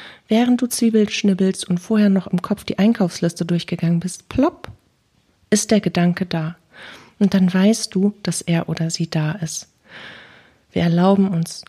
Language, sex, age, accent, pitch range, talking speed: German, female, 40-59, German, 175-205 Hz, 160 wpm